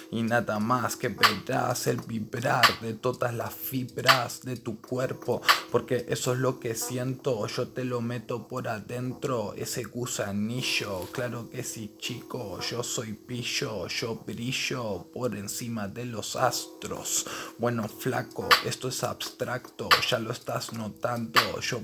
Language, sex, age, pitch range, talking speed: Spanish, male, 20-39, 110-125 Hz, 145 wpm